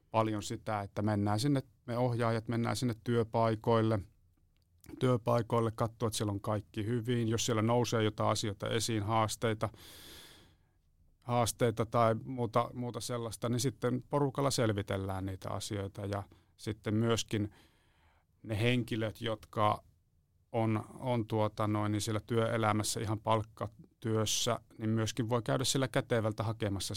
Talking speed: 125 wpm